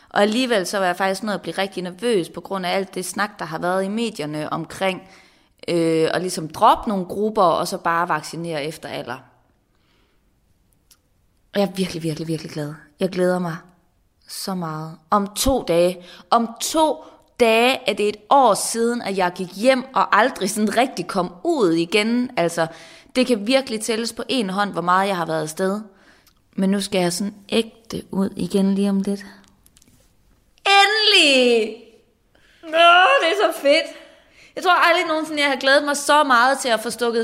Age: 20-39